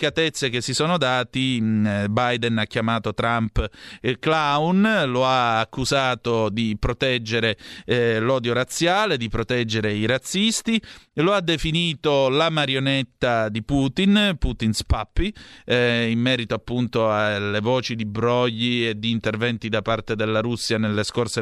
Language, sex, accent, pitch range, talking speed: Italian, male, native, 115-140 Hz, 135 wpm